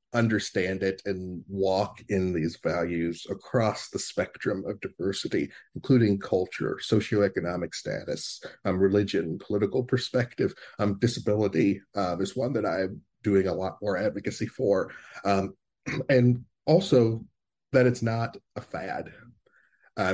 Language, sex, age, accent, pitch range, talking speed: English, male, 40-59, American, 90-110 Hz, 125 wpm